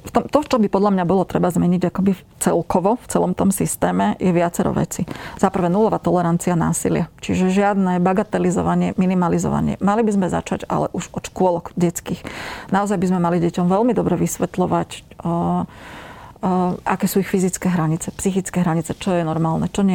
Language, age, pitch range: Slovak, 40-59, 175-200 Hz